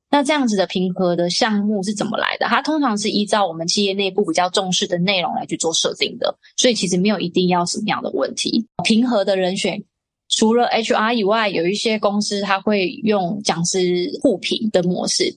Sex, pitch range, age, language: female, 185-220 Hz, 20-39, Chinese